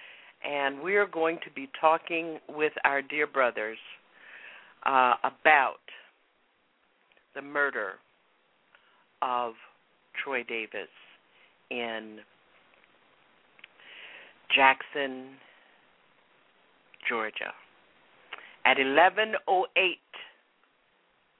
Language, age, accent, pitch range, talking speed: English, 50-69, American, 130-160 Hz, 65 wpm